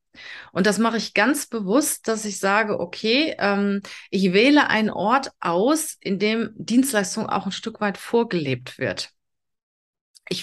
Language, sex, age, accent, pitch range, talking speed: German, female, 30-49, German, 170-210 Hz, 150 wpm